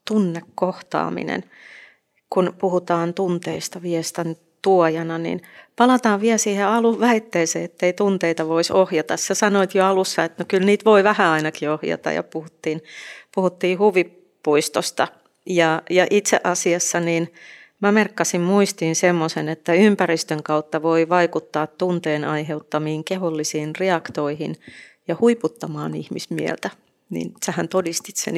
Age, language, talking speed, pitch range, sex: 30-49, Finnish, 125 wpm, 160-195 Hz, female